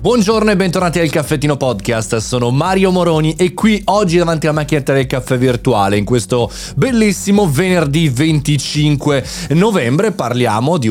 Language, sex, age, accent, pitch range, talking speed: Italian, male, 30-49, native, 125-175 Hz, 145 wpm